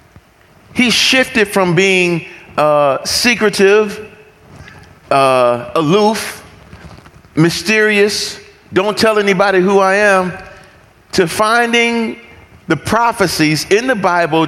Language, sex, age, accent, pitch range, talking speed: English, male, 40-59, American, 185-245 Hz, 90 wpm